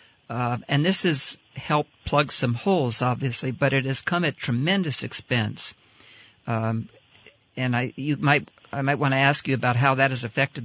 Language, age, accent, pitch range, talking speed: English, 50-69, American, 120-140 Hz, 180 wpm